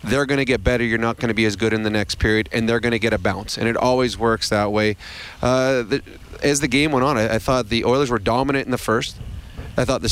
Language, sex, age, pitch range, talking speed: English, male, 30-49, 115-135 Hz, 290 wpm